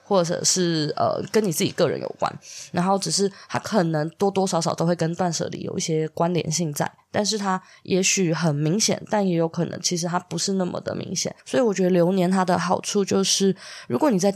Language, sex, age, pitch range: Chinese, female, 20-39, 170-200 Hz